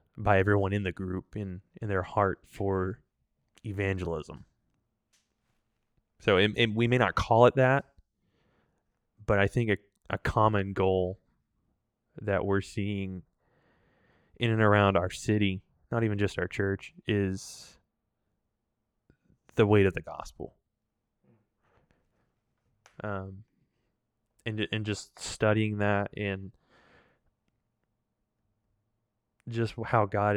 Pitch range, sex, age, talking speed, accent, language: 95-110 Hz, male, 20-39, 110 wpm, American, English